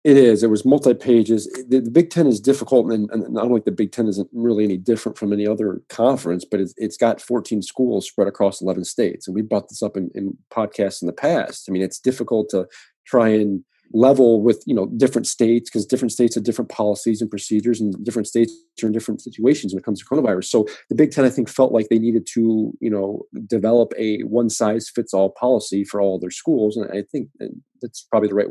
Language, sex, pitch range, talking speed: English, male, 105-120 Hz, 225 wpm